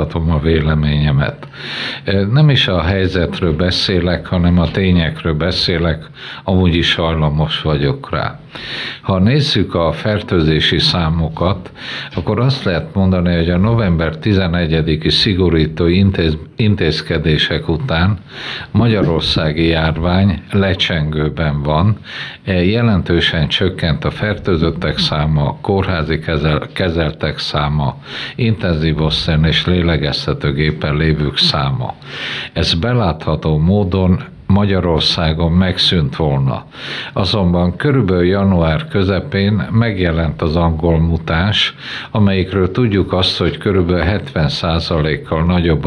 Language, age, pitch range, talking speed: Hungarian, 50-69, 80-95 Hz, 100 wpm